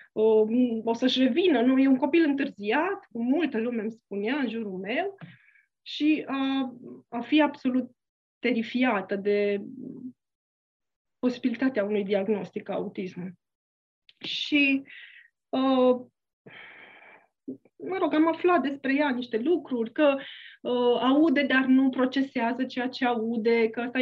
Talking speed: 115 wpm